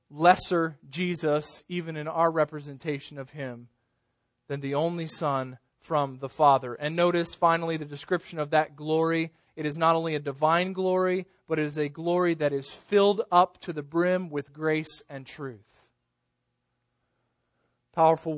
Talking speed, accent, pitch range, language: 155 wpm, American, 140-175 Hz, English